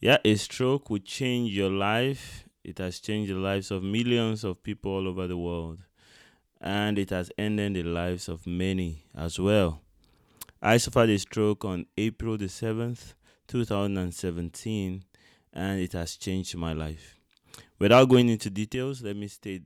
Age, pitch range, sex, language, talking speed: 20-39, 95-115 Hz, male, English, 160 wpm